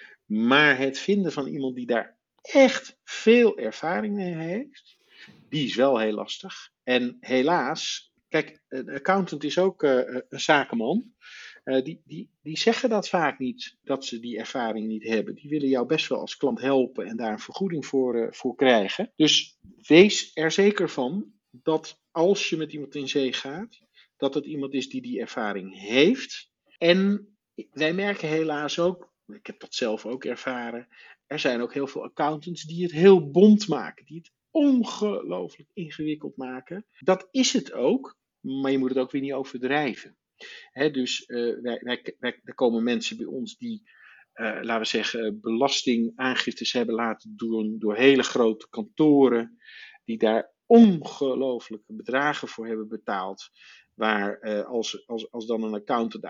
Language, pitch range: Dutch, 120-195 Hz